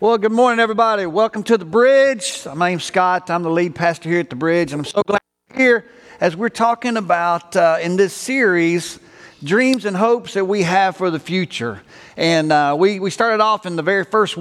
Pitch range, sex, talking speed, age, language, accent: 165-220 Hz, male, 215 wpm, 50-69, English, American